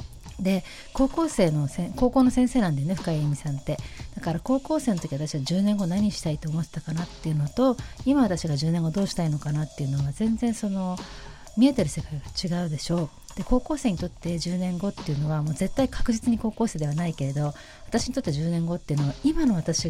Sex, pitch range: female, 155-225 Hz